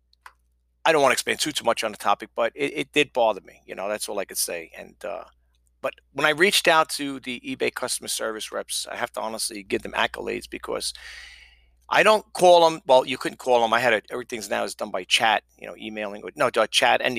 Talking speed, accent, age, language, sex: 245 wpm, American, 40-59, English, male